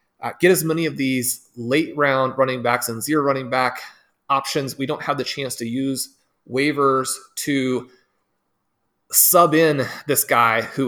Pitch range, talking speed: 120-155 Hz, 160 wpm